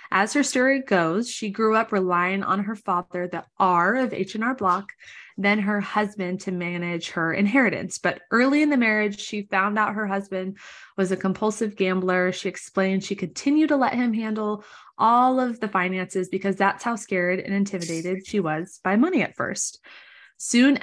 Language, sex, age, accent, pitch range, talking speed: English, female, 20-39, American, 180-215 Hz, 180 wpm